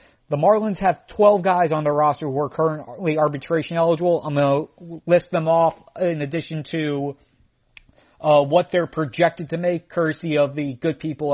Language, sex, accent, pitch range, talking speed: English, male, American, 150-180 Hz, 175 wpm